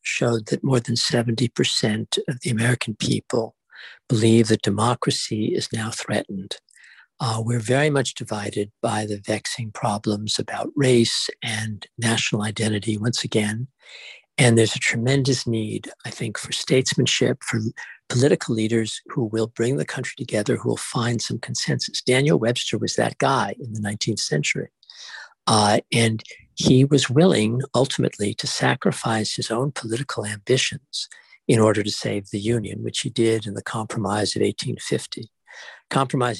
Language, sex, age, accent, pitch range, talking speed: English, male, 60-79, American, 110-125 Hz, 150 wpm